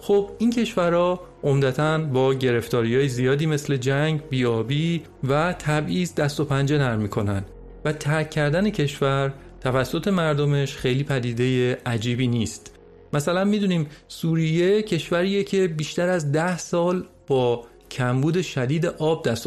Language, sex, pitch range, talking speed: Persian, male, 130-175 Hz, 130 wpm